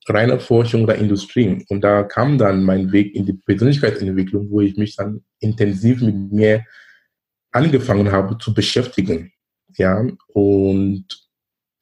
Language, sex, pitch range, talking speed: German, male, 100-120 Hz, 130 wpm